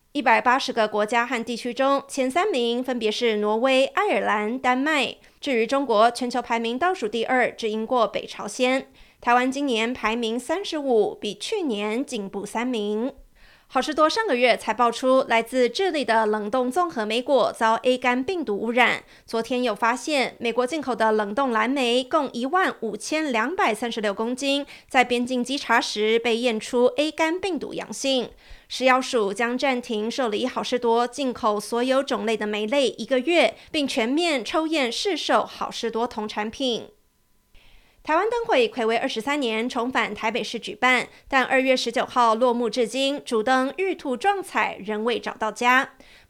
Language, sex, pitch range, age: Chinese, female, 225-270 Hz, 20-39